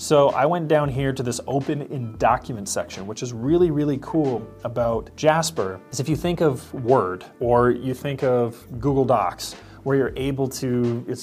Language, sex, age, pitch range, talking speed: English, male, 30-49, 115-140 Hz, 185 wpm